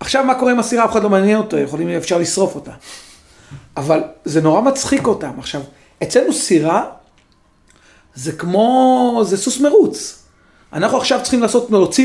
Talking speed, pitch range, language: 160 wpm, 155-225 Hz, Hebrew